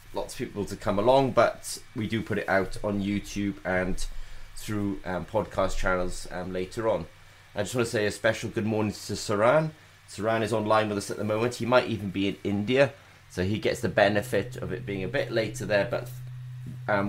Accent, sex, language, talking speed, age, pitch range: British, male, English, 215 wpm, 30-49, 100-125 Hz